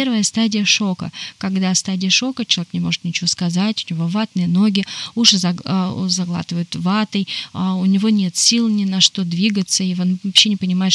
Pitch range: 185-215 Hz